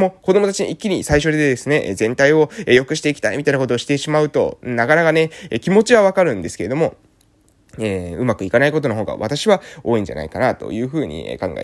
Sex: male